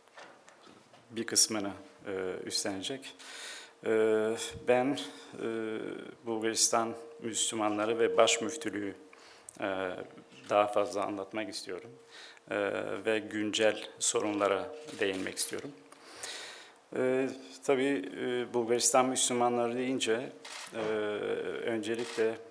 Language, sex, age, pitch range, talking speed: Turkish, male, 50-69, 110-135 Hz, 85 wpm